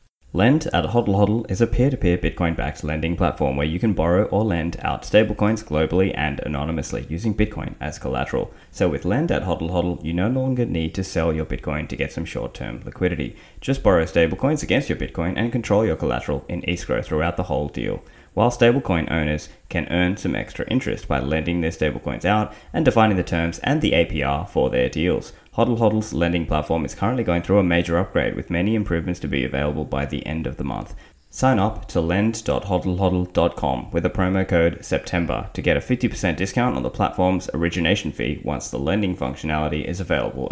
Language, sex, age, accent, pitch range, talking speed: English, male, 20-39, Australian, 80-105 Hz, 195 wpm